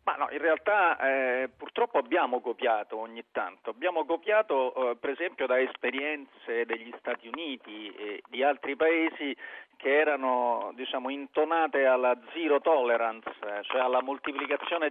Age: 40-59